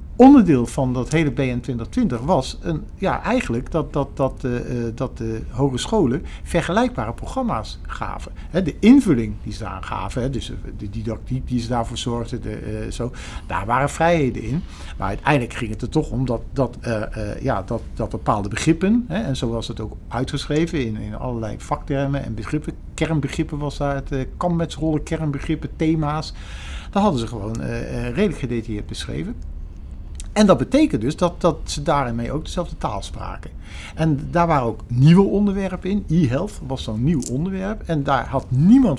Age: 50-69